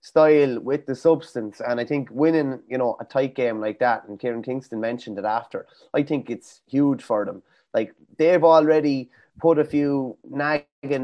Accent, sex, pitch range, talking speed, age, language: Irish, male, 120-145 Hz, 185 wpm, 20-39, English